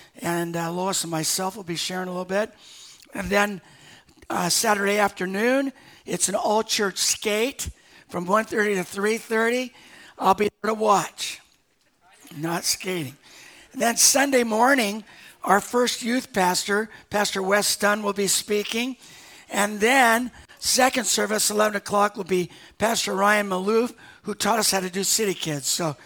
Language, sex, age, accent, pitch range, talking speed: English, male, 60-79, American, 180-220 Hz, 150 wpm